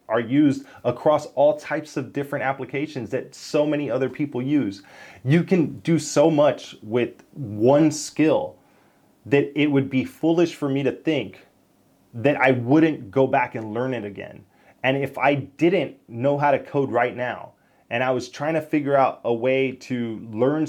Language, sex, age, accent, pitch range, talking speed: English, male, 20-39, American, 120-145 Hz, 175 wpm